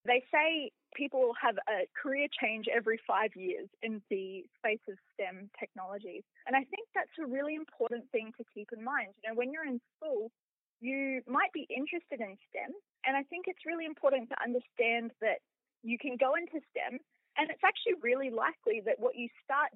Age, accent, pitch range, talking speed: 20-39, Australian, 220-290 Hz, 190 wpm